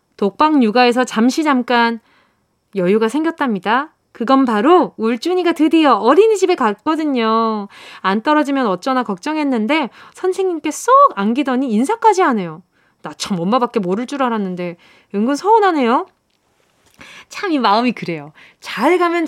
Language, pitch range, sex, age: Korean, 215-310 Hz, female, 20-39